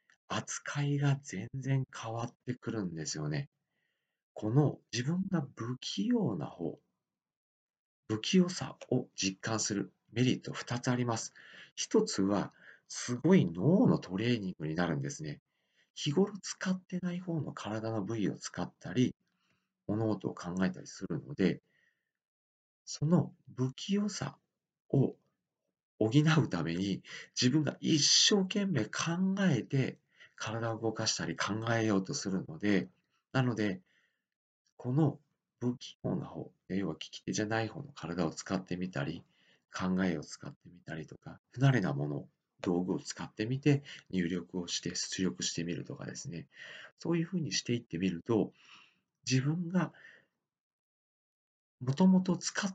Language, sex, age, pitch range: Japanese, male, 40-59, 100-155 Hz